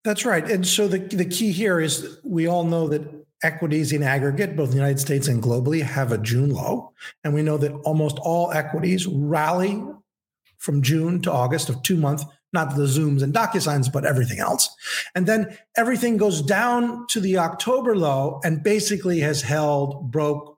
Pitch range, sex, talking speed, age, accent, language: 145-185 Hz, male, 185 wpm, 50-69, American, English